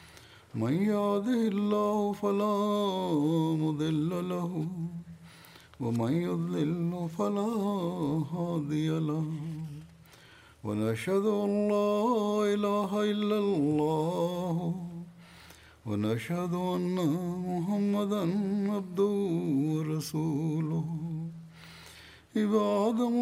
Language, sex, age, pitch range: Malayalam, male, 50-69, 155-200 Hz